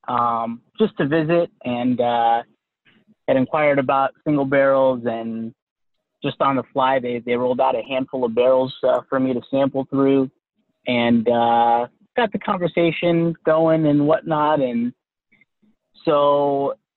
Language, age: English, 20-39